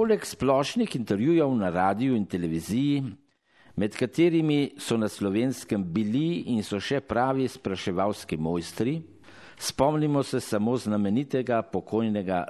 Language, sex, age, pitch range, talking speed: Italian, male, 50-69, 95-145 Hz, 115 wpm